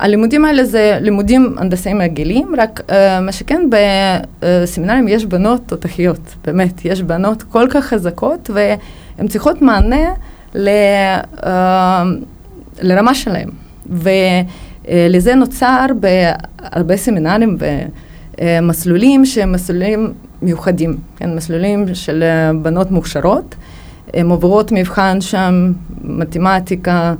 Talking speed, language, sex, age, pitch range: 100 wpm, Hebrew, female, 30-49, 175-210 Hz